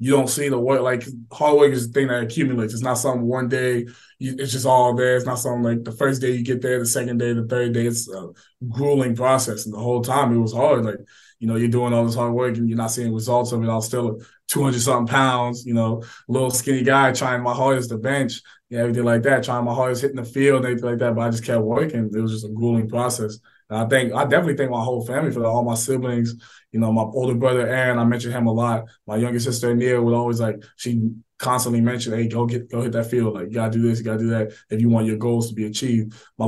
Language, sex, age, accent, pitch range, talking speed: English, male, 20-39, American, 115-130 Hz, 275 wpm